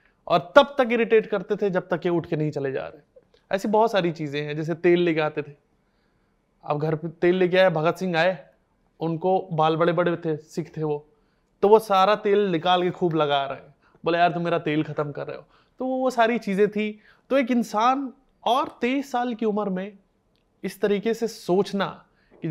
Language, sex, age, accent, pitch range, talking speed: Hindi, male, 20-39, native, 160-205 Hz, 210 wpm